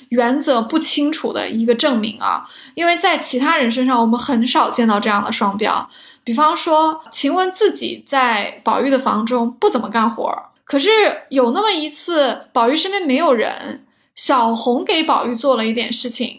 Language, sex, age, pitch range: Chinese, female, 10-29, 245-320 Hz